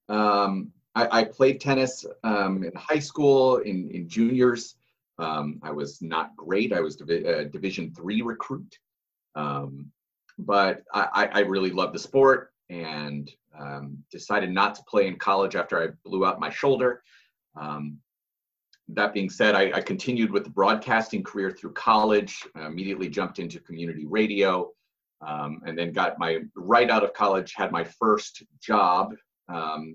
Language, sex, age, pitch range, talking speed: English, male, 30-49, 85-115 Hz, 160 wpm